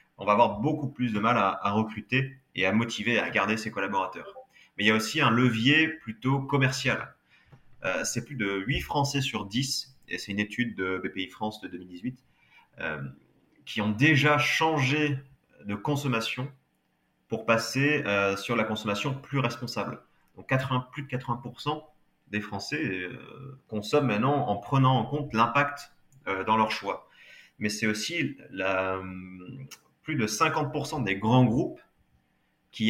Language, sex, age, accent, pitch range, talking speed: French, male, 30-49, French, 105-135 Hz, 160 wpm